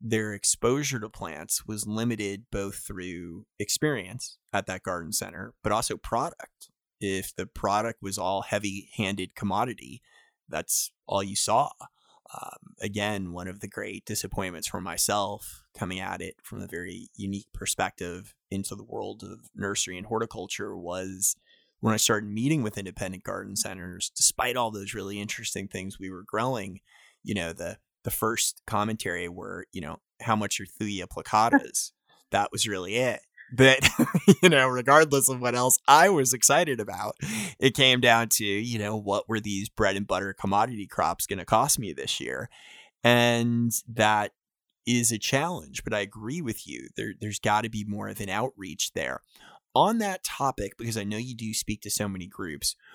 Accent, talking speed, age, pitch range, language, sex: American, 170 wpm, 30-49, 100-120 Hz, English, male